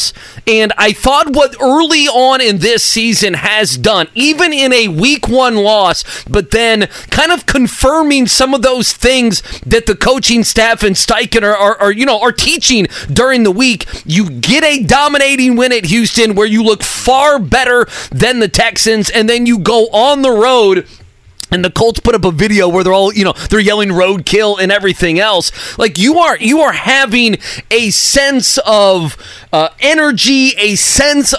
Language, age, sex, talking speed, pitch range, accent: English, 30-49, male, 175 wpm, 210-270 Hz, American